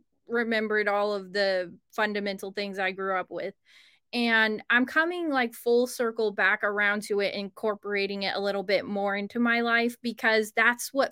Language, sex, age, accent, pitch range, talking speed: English, female, 20-39, American, 205-240 Hz, 175 wpm